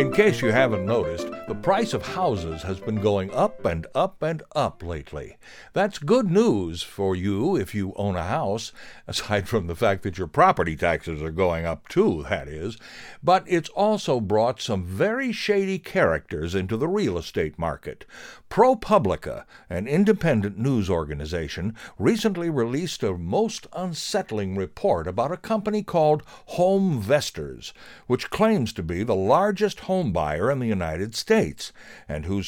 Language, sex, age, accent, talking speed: English, male, 60-79, American, 160 wpm